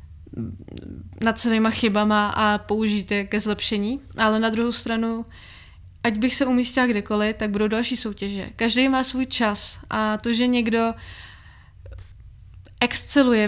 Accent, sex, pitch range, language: native, female, 200-235 Hz, Czech